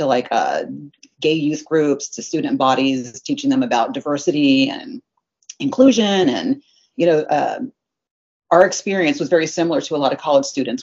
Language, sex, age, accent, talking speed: English, female, 30-49, American, 165 wpm